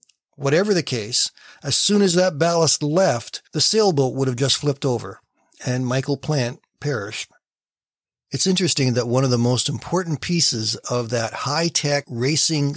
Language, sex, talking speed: English, male, 155 wpm